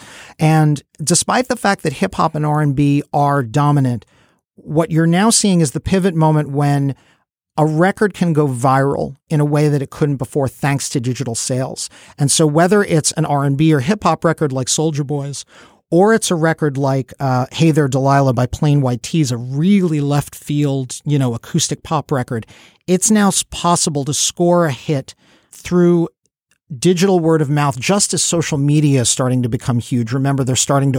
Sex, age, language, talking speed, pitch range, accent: male, 50-69, English, 185 wpm, 130-155 Hz, American